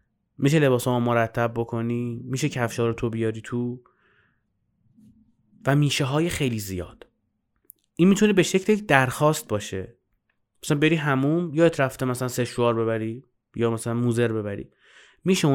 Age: 30-49